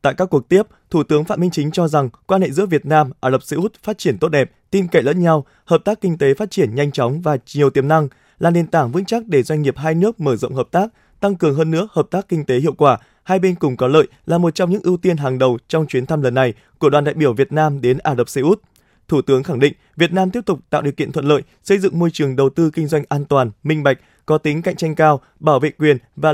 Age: 20-39